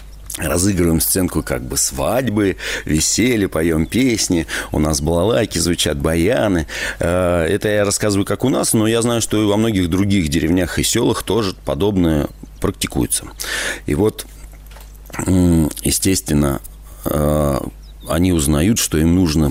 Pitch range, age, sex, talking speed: 75-90 Hz, 40-59, male, 125 wpm